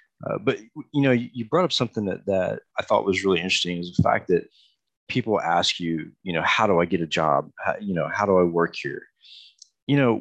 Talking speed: 235 wpm